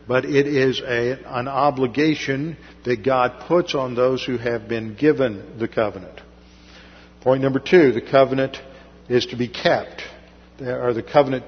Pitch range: 115-140 Hz